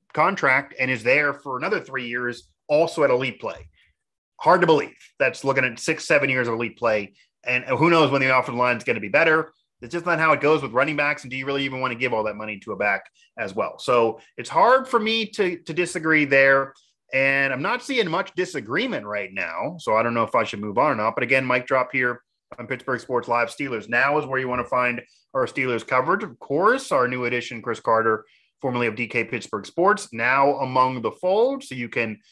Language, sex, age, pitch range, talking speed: English, male, 30-49, 120-155 Hz, 240 wpm